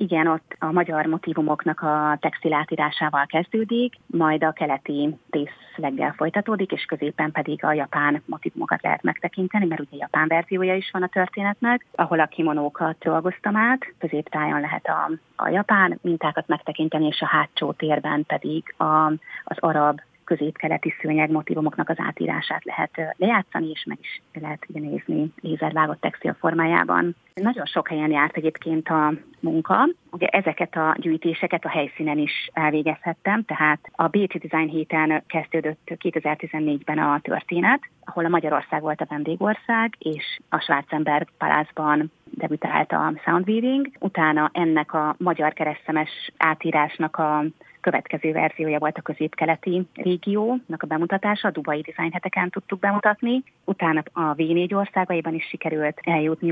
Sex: female